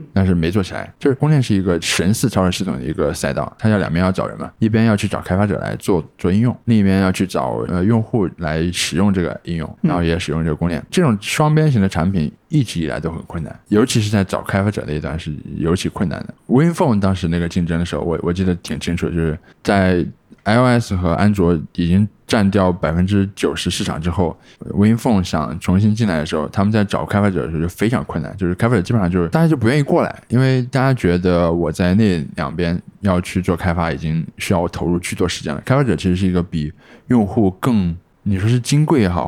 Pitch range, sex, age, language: 85-110 Hz, male, 20-39, Chinese